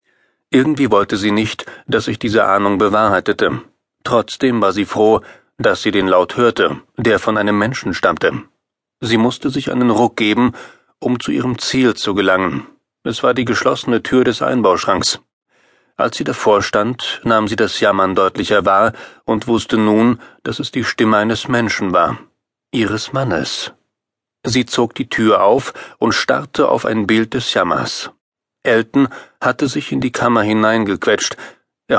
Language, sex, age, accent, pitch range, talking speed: German, male, 40-59, German, 105-120 Hz, 160 wpm